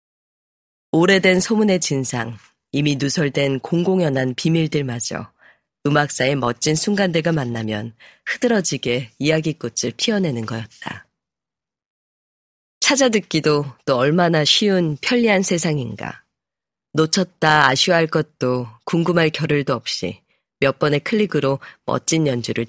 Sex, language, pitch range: female, Korean, 130-175 Hz